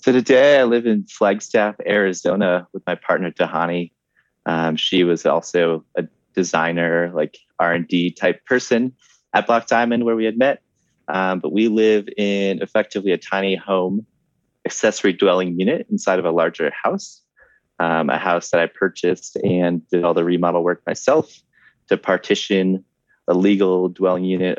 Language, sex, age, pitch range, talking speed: English, male, 30-49, 90-115 Hz, 155 wpm